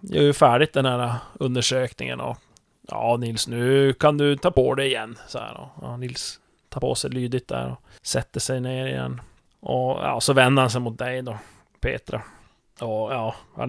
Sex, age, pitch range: male, 30-49, 120-155 Hz